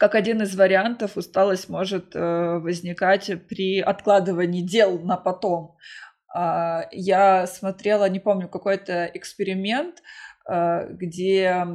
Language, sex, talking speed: Russian, female, 95 wpm